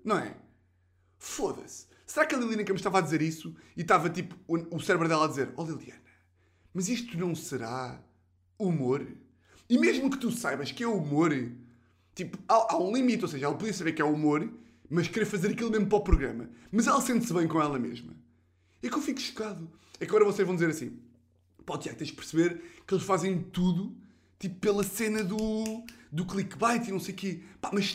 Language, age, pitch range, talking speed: Portuguese, 20-39, 145-225 Hz, 210 wpm